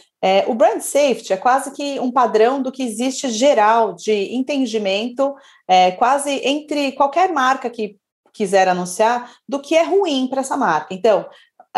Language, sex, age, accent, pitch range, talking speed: Portuguese, female, 30-49, Brazilian, 195-265 Hz, 150 wpm